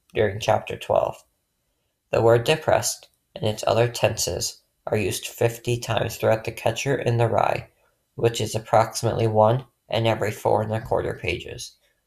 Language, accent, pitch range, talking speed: English, American, 110-120 Hz, 155 wpm